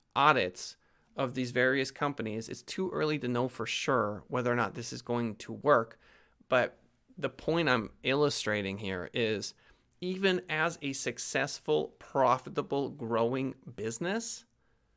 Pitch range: 115-145 Hz